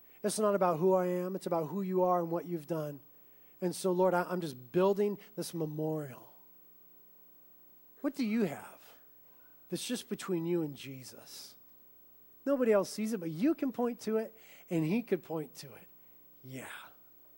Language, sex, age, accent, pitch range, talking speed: English, male, 40-59, American, 150-210 Hz, 175 wpm